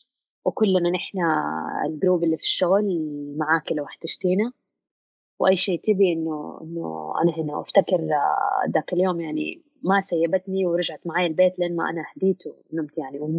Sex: female